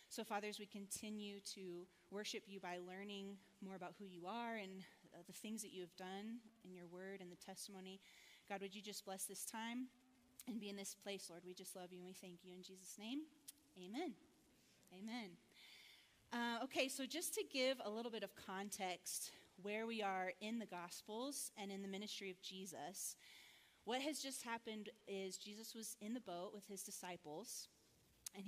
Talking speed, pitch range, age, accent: 190 wpm, 190-230 Hz, 30-49, American